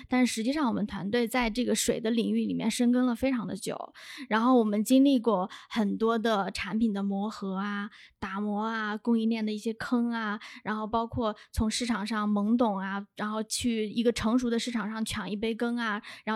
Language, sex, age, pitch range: Chinese, female, 20-39, 210-255 Hz